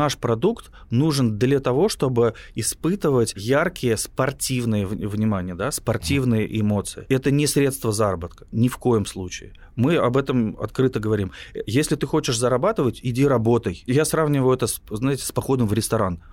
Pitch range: 110-135 Hz